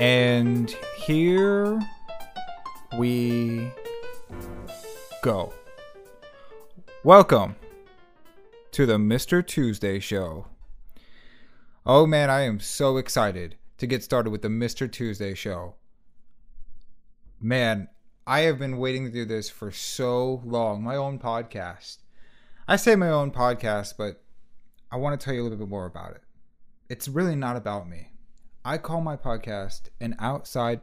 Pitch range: 105-135 Hz